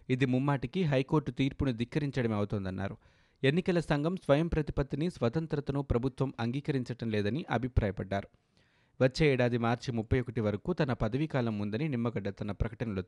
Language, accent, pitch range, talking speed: Telugu, native, 115-145 Hz, 120 wpm